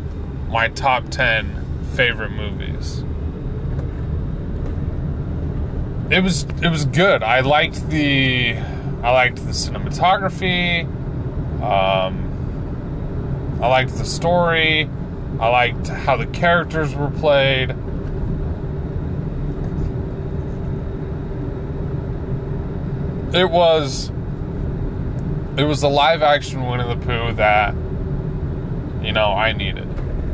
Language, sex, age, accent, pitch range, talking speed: English, male, 20-39, American, 115-150 Hz, 85 wpm